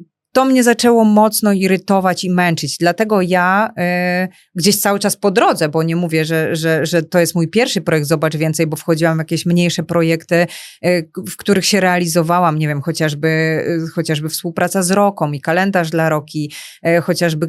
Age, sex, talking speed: 30-49, female, 180 wpm